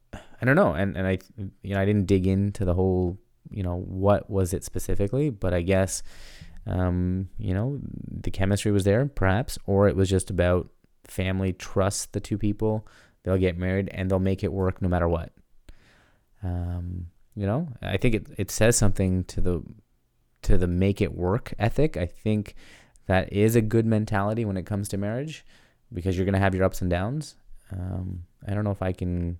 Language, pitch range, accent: English, 90-105 Hz, American